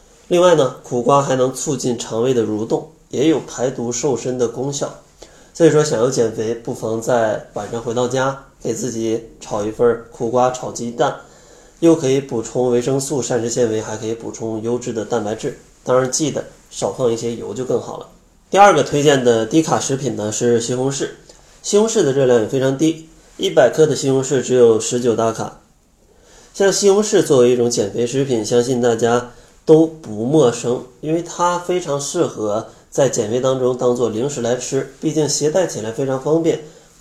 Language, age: Chinese, 20-39